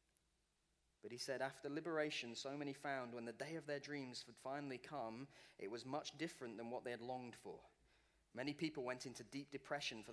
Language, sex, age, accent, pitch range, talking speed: English, male, 30-49, British, 130-190 Hz, 200 wpm